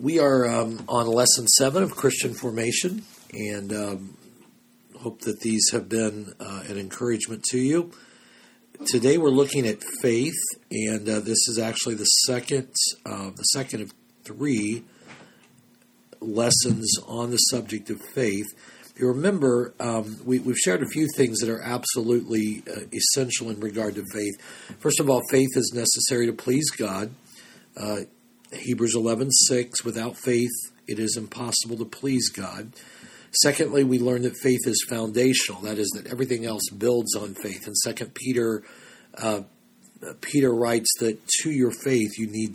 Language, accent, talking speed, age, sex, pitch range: English, American, 160 wpm, 50-69, male, 110-125 Hz